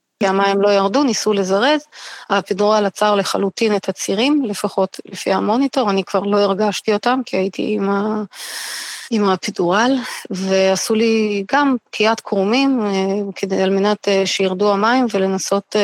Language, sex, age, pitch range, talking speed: Hebrew, female, 30-49, 200-255 Hz, 130 wpm